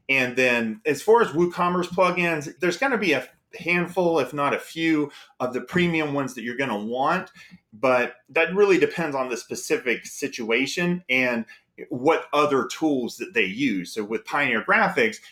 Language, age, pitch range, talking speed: English, 30-49, 130-175 Hz, 175 wpm